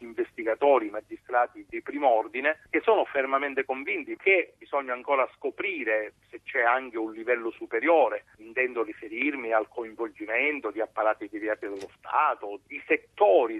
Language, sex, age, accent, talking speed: Italian, male, 50-69, native, 135 wpm